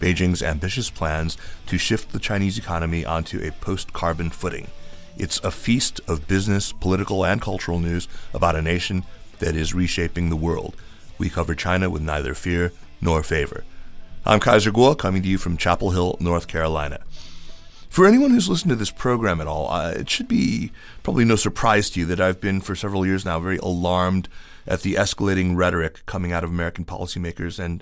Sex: male